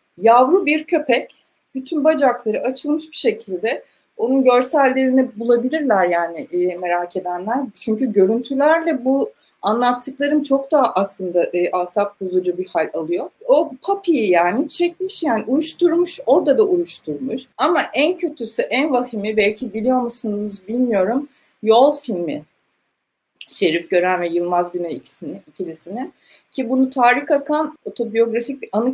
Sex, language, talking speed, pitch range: female, Turkish, 125 wpm, 190-275 Hz